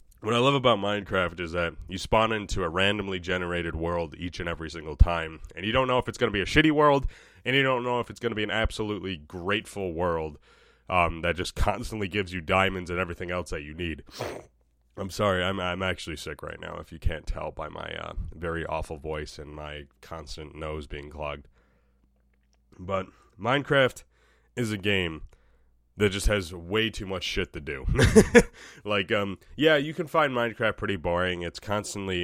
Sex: male